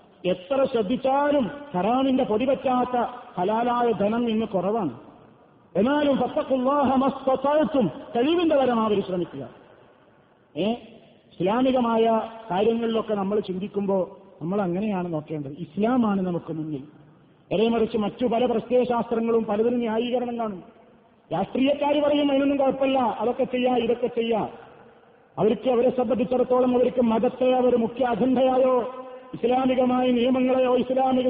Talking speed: 90 wpm